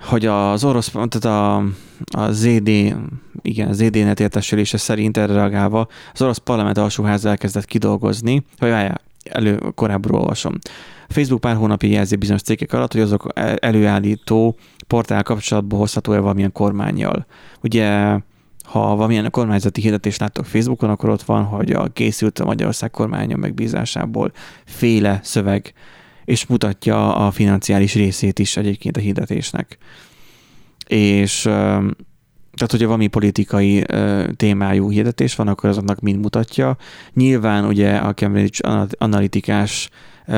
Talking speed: 120 wpm